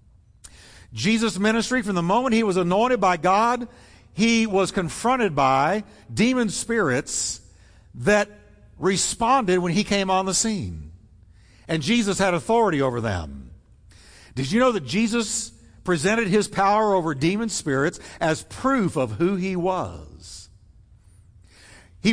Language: English